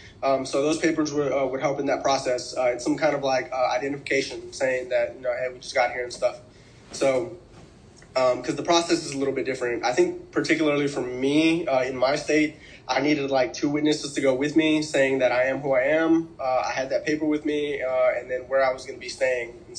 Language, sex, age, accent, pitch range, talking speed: English, male, 20-39, American, 135-165 Hz, 250 wpm